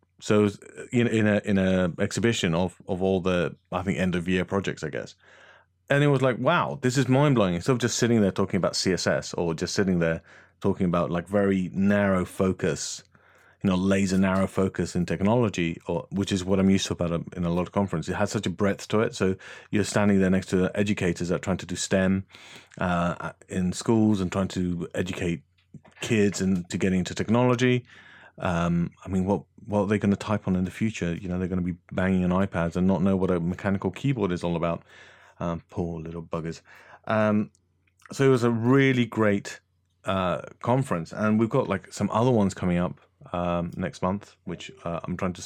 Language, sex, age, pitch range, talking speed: English, male, 30-49, 90-105 Hz, 205 wpm